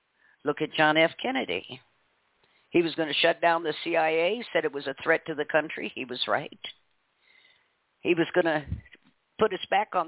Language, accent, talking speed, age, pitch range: English, American, 180 wpm, 50-69, 155-210 Hz